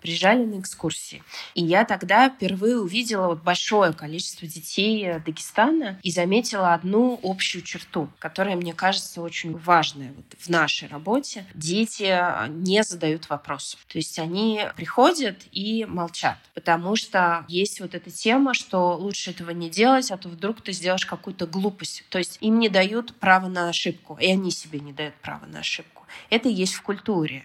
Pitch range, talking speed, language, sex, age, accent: 175-210 Hz, 160 wpm, Russian, female, 20-39, native